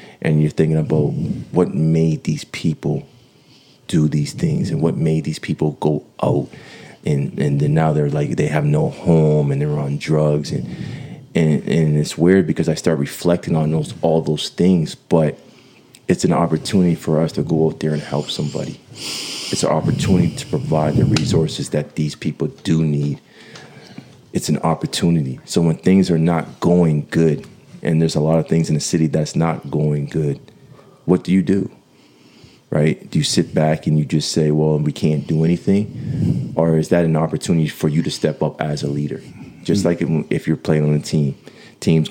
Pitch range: 75-85 Hz